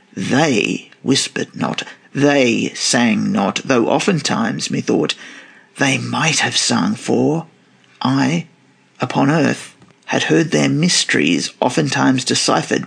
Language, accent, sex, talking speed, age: English, Australian, male, 105 wpm, 50-69